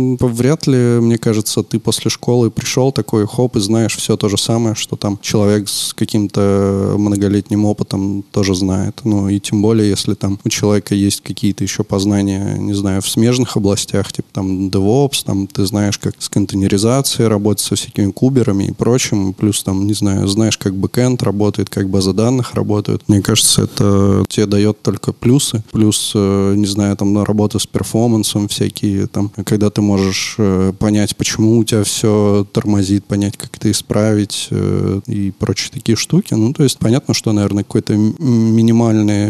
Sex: male